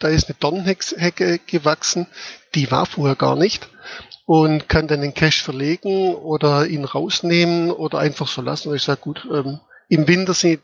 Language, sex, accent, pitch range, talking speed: German, male, German, 150-170 Hz, 170 wpm